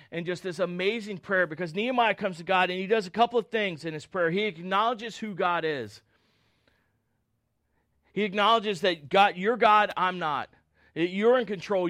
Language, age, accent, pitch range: English, 40-59, American, 160-225 Hz